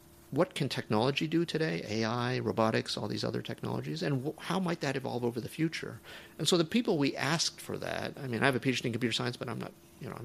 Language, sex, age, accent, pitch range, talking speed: English, male, 50-69, American, 115-155 Hz, 240 wpm